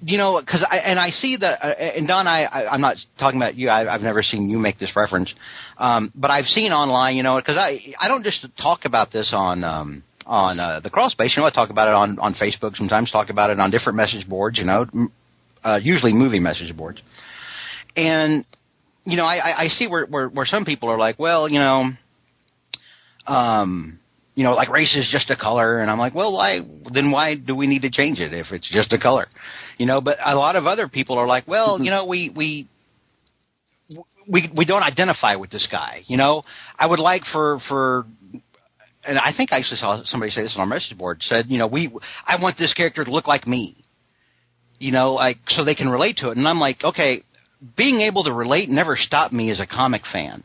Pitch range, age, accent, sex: 110-155 Hz, 40-59, American, male